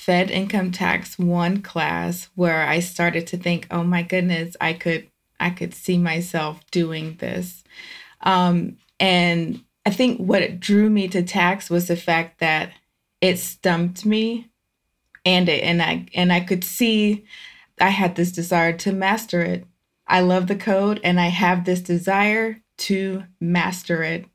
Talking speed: 160 wpm